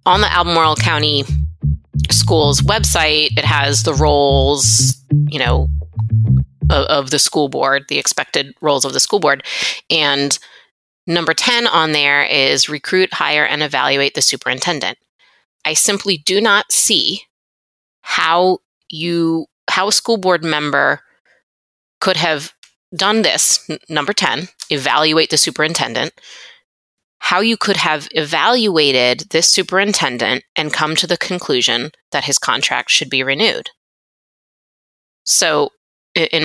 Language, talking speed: English, 130 wpm